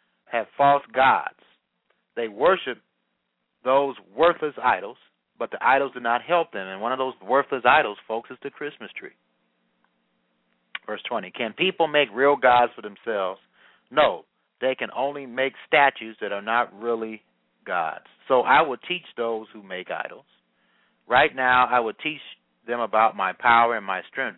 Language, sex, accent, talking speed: English, male, American, 160 wpm